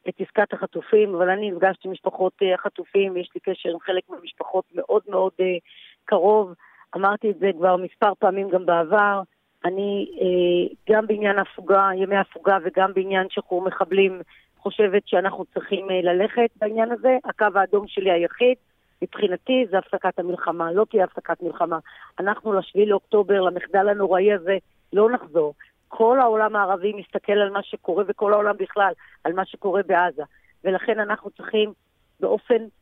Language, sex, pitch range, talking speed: Hebrew, female, 190-225 Hz, 145 wpm